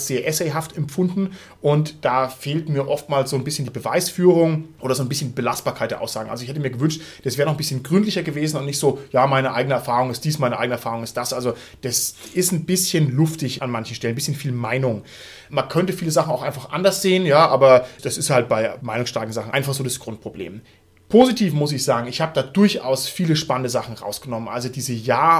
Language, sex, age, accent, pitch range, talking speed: German, male, 30-49, German, 130-160 Hz, 220 wpm